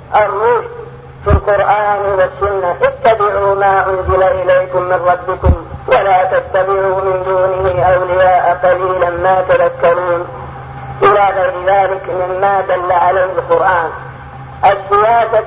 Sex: female